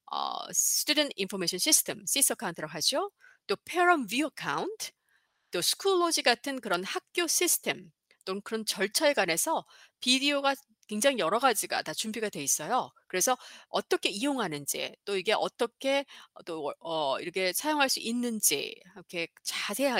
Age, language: 40-59, Korean